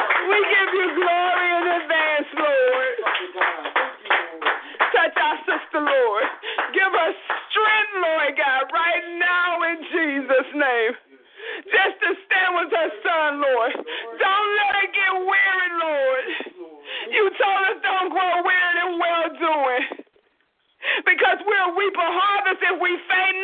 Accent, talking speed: American, 130 wpm